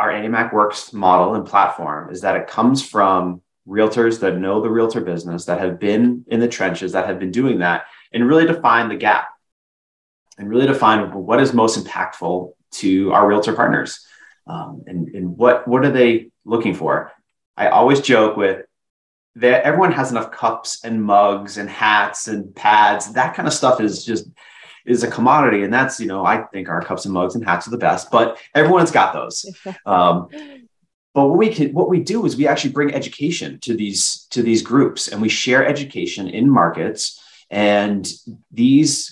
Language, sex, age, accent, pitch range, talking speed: English, male, 30-49, American, 100-130 Hz, 185 wpm